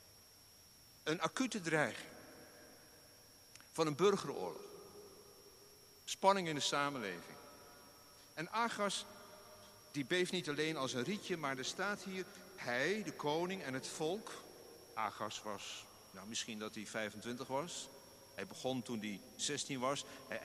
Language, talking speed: Dutch, 130 wpm